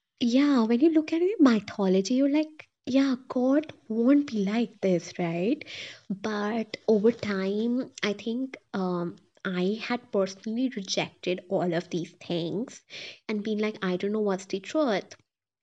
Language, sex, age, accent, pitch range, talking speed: English, female, 20-39, Indian, 195-245 Hz, 155 wpm